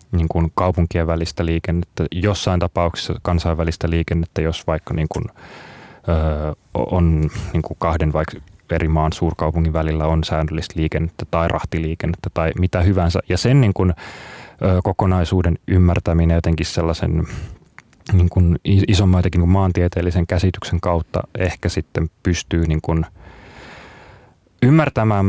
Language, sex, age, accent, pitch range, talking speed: Finnish, male, 30-49, native, 85-95 Hz, 130 wpm